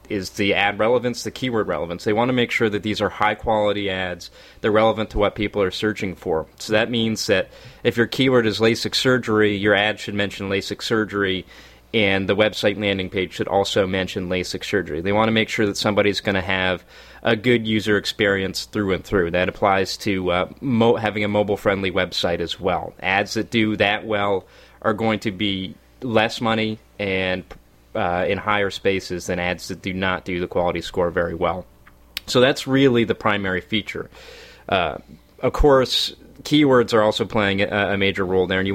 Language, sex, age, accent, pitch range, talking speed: English, male, 30-49, American, 95-110 Hz, 195 wpm